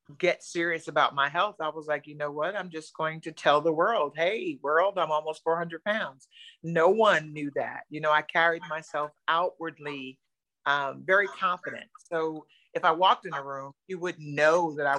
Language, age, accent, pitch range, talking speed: English, 50-69, American, 150-210 Hz, 195 wpm